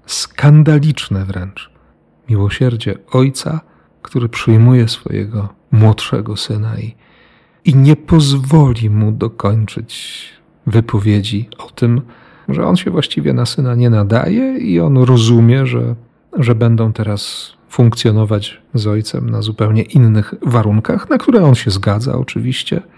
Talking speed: 120 wpm